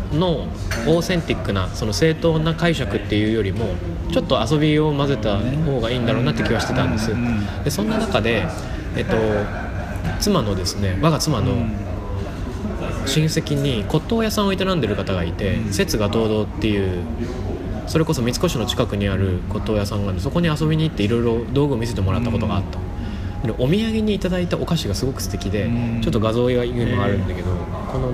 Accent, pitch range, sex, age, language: Japanese, 95-140 Hz, male, 20-39, English